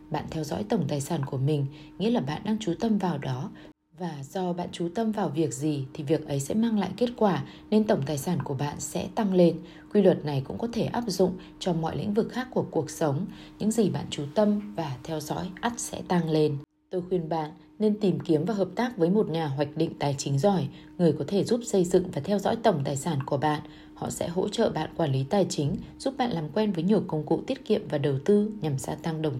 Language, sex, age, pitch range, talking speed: Vietnamese, female, 20-39, 150-200 Hz, 255 wpm